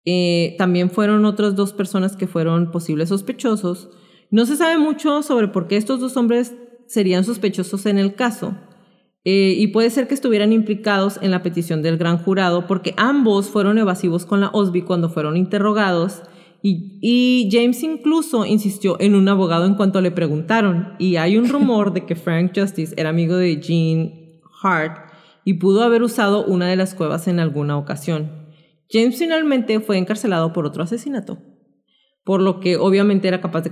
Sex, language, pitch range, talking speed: female, Spanish, 170-215 Hz, 175 wpm